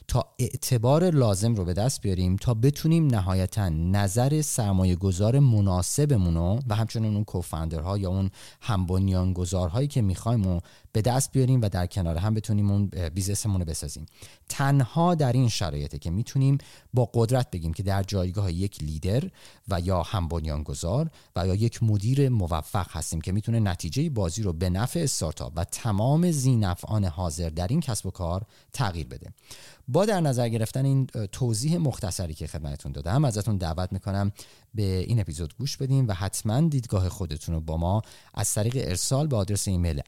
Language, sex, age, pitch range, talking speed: Persian, male, 30-49, 90-120 Hz, 165 wpm